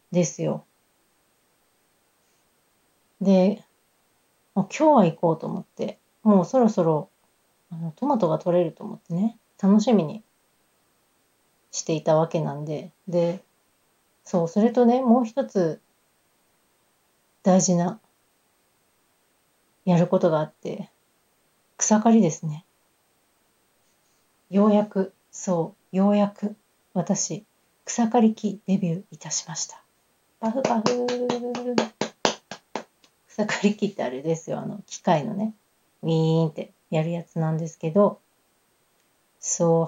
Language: Japanese